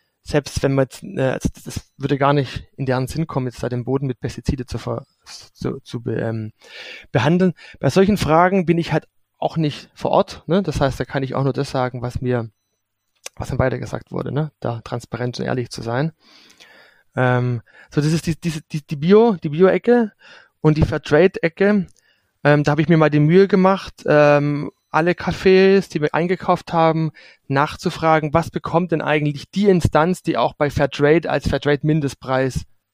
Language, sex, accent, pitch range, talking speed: German, male, German, 135-165 Hz, 185 wpm